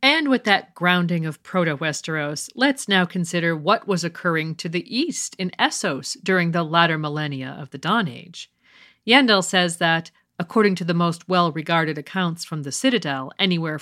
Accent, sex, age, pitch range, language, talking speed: American, female, 40-59, 155-215 Hz, English, 165 wpm